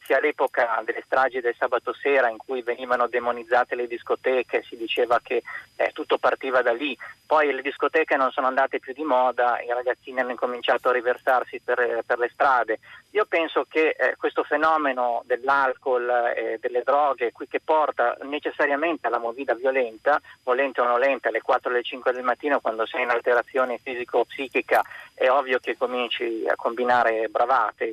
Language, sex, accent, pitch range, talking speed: Italian, male, native, 125-155 Hz, 175 wpm